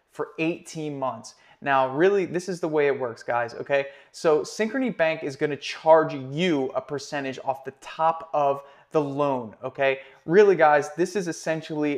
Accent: American